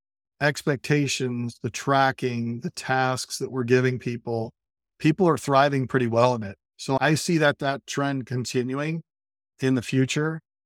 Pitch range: 115-150 Hz